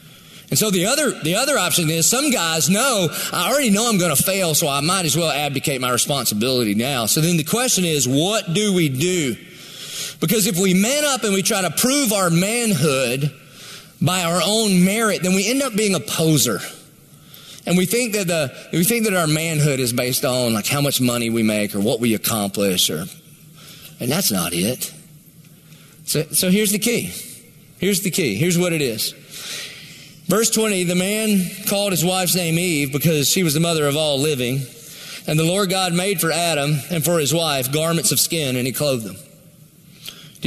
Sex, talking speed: male, 200 wpm